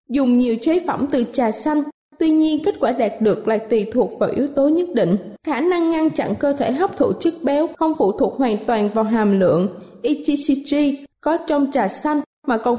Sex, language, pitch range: female, Vietnamese, 240-315 Hz